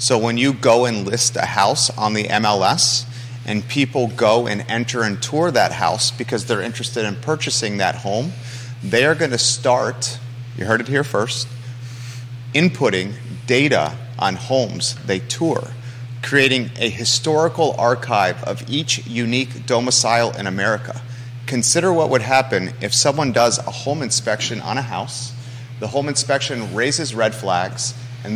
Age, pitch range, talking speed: 30-49, 115-130 Hz, 150 wpm